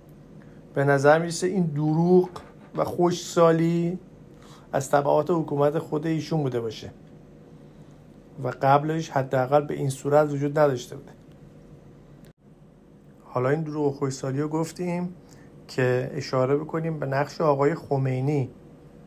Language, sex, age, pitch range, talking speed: Persian, male, 50-69, 135-160 Hz, 120 wpm